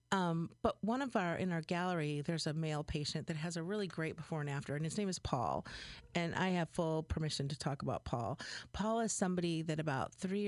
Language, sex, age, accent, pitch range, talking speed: English, female, 40-59, American, 145-180 Hz, 230 wpm